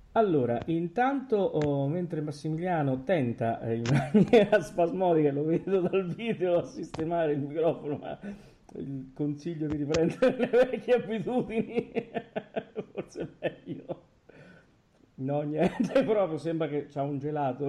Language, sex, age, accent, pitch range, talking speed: Italian, male, 40-59, native, 120-160 Hz, 120 wpm